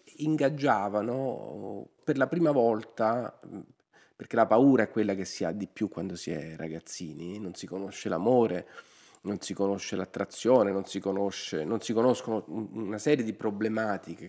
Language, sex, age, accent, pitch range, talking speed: Italian, male, 40-59, native, 100-125 Hz, 155 wpm